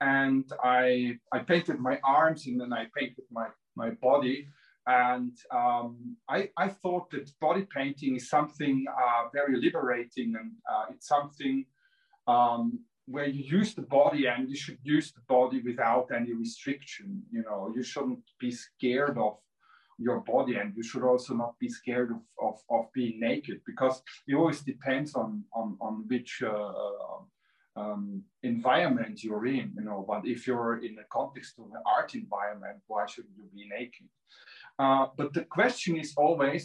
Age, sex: 40-59, male